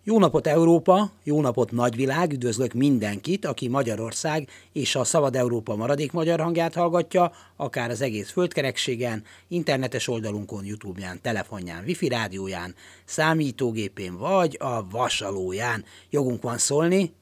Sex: male